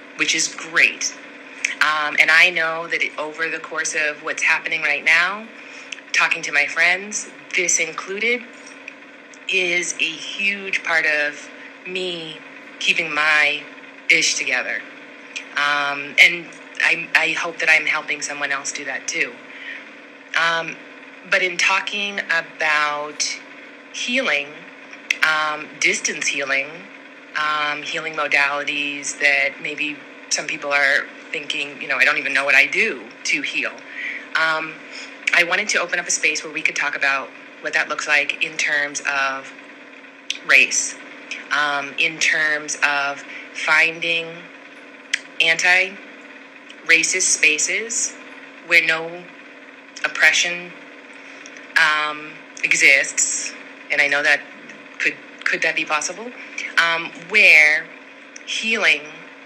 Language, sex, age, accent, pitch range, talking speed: English, female, 30-49, American, 150-255 Hz, 120 wpm